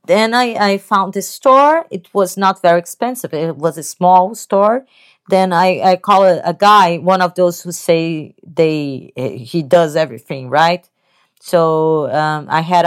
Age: 30-49